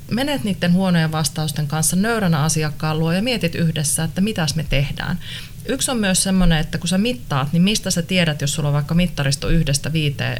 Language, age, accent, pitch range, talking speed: Finnish, 30-49, native, 145-180 Hz, 195 wpm